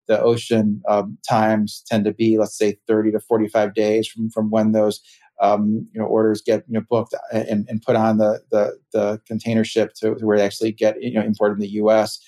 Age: 30-49